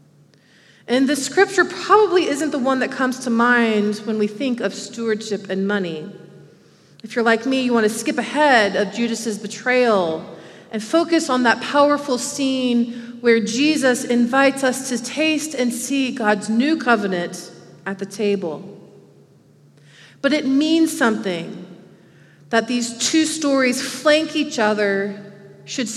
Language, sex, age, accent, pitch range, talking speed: English, female, 30-49, American, 190-250 Hz, 145 wpm